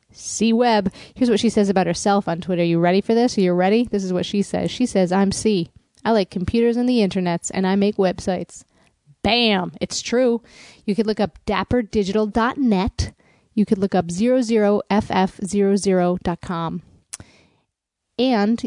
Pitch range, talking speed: 180-225 Hz, 165 wpm